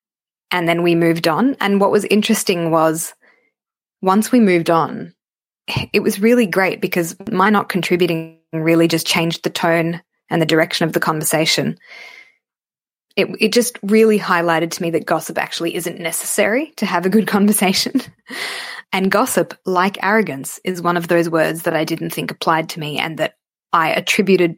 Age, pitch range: 20-39, 165-190 Hz